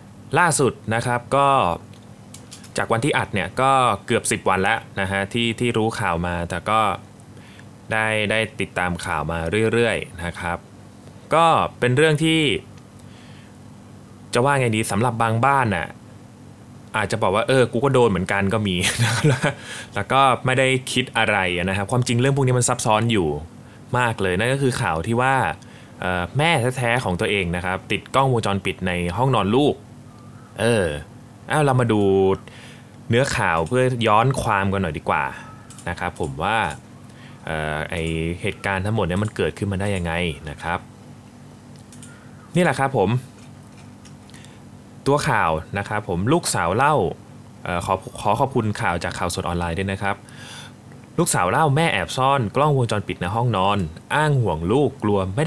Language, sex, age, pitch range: Thai, male, 20-39, 100-125 Hz